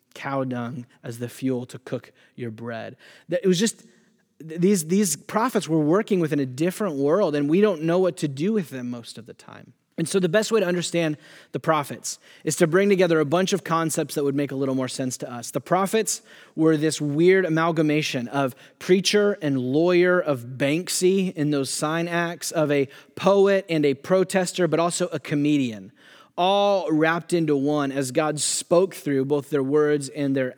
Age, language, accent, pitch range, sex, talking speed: 30-49, English, American, 135-185 Hz, male, 195 wpm